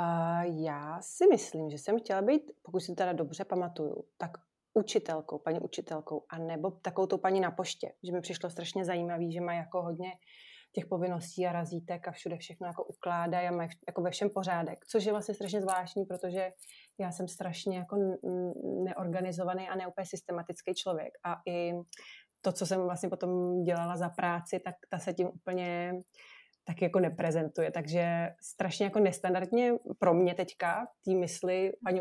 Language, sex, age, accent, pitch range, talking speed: Czech, female, 30-49, native, 175-190 Hz, 165 wpm